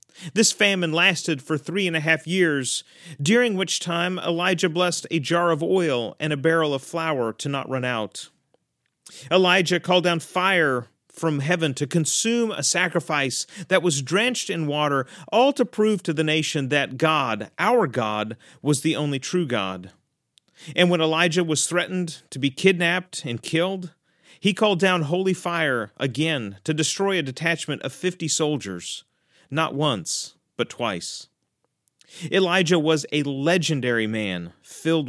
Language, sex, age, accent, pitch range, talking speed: English, male, 40-59, American, 140-180 Hz, 155 wpm